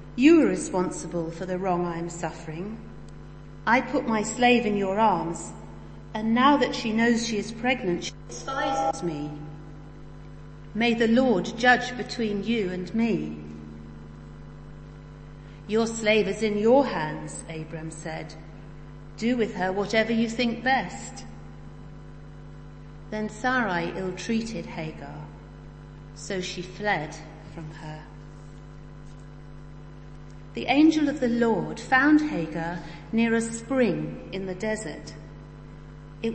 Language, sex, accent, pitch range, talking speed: English, female, British, 145-230 Hz, 120 wpm